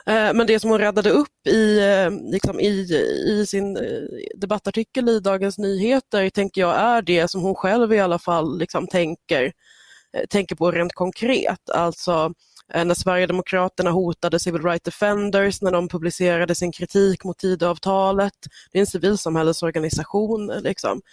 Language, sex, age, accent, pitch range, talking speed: Swedish, female, 20-39, native, 170-200 Hz, 135 wpm